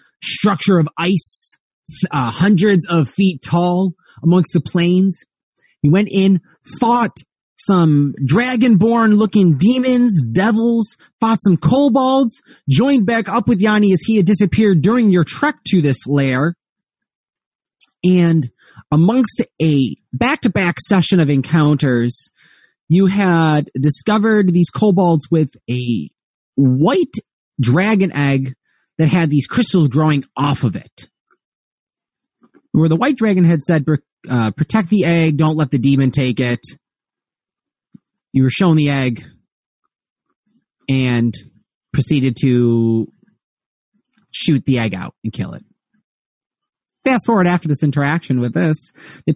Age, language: 30-49, English